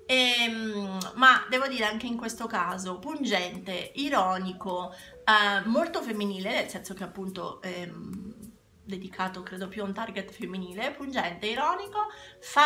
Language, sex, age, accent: Italian, female, 30-49, native